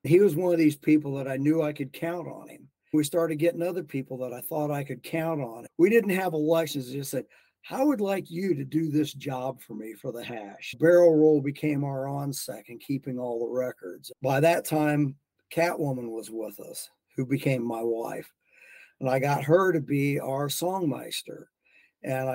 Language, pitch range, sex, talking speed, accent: English, 130-155 Hz, male, 205 wpm, American